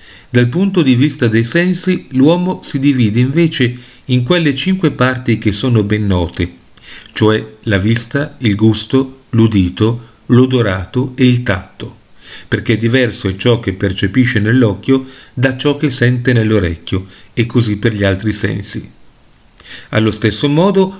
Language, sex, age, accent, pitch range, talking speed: Italian, male, 40-59, native, 105-140 Hz, 140 wpm